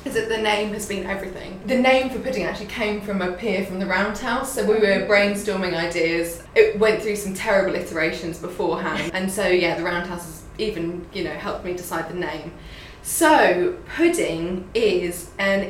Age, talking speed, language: 20-39, 185 wpm, English